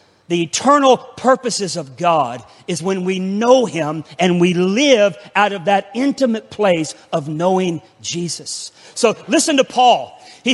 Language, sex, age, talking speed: English, male, 40-59, 150 wpm